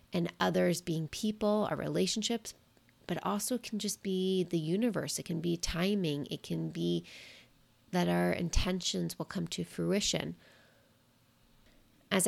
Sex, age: female, 30-49